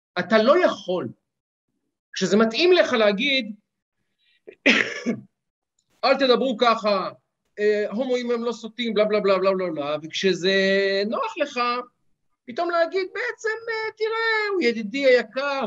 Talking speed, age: 115 wpm, 50-69